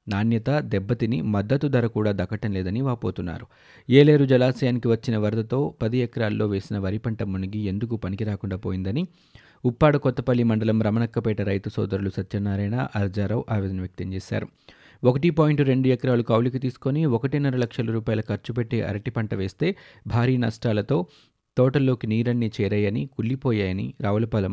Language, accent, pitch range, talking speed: Telugu, native, 100-125 Hz, 120 wpm